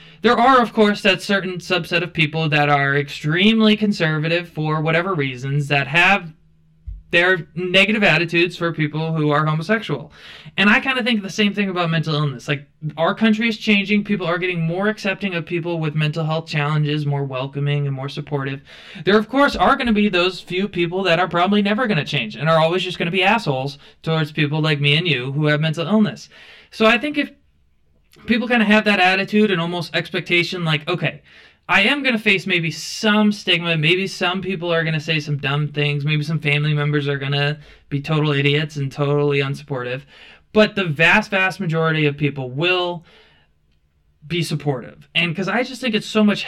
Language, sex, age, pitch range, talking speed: English, male, 20-39, 145-195 Hz, 205 wpm